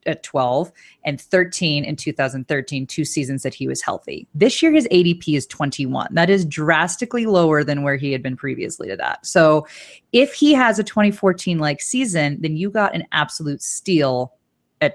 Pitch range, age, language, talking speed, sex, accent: 145-195 Hz, 30-49, English, 180 wpm, female, American